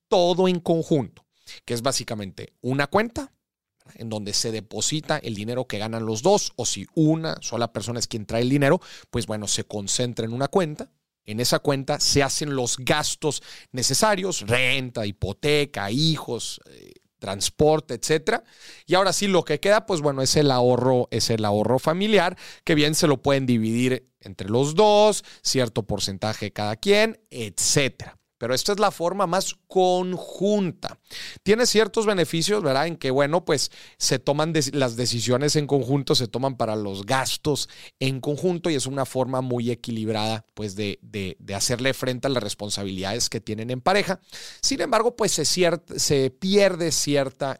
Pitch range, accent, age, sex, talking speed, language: 115-165 Hz, Mexican, 40-59, male, 170 wpm, Spanish